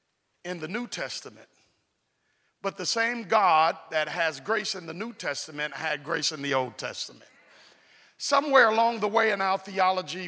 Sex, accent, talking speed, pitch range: male, American, 165 wpm, 170-230 Hz